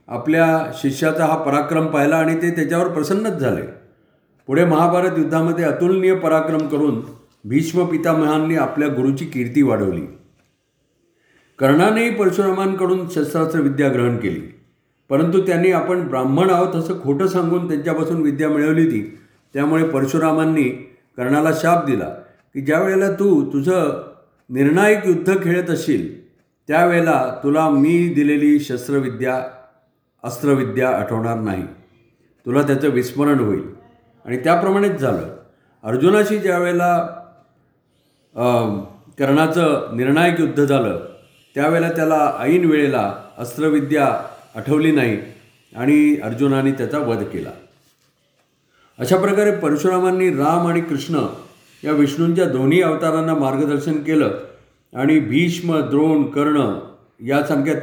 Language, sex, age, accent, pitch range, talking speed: Marathi, male, 50-69, native, 140-170 Hz, 105 wpm